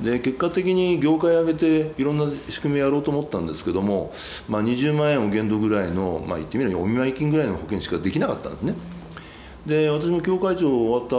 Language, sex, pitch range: Japanese, male, 100-155 Hz